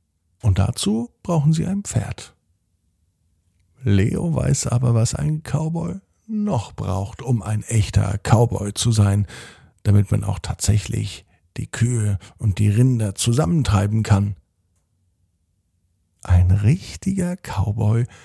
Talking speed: 110 wpm